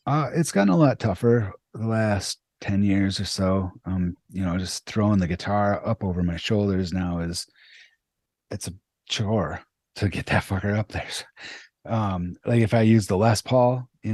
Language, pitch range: English, 85-105 Hz